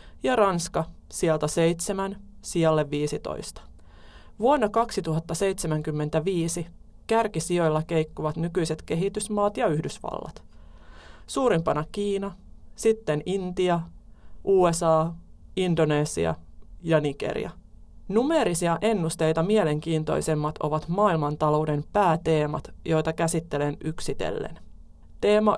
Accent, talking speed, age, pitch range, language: native, 75 wpm, 30-49, 150-180 Hz, Finnish